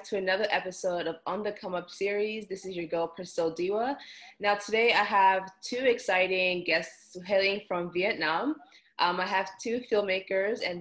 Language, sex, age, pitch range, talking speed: English, female, 20-39, 165-200 Hz, 170 wpm